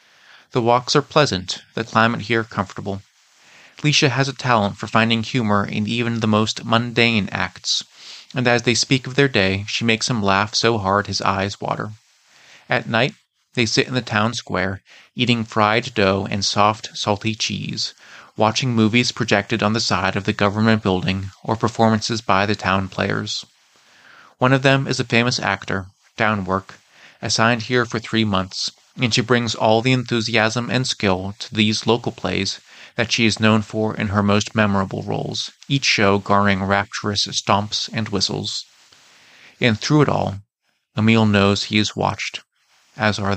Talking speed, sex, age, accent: 165 wpm, male, 30-49, American